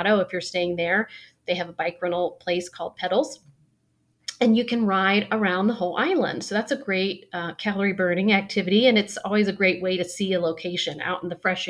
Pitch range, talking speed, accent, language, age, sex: 175-205 Hz, 215 wpm, American, English, 30-49, female